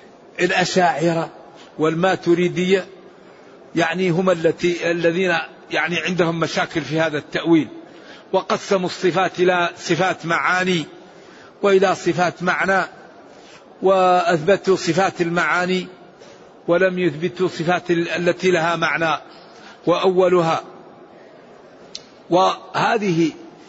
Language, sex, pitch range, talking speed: Arabic, male, 175-195 Hz, 80 wpm